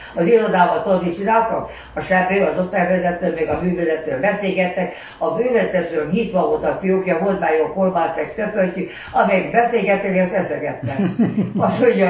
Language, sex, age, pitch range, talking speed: Hungarian, female, 60-79, 175-220 Hz, 145 wpm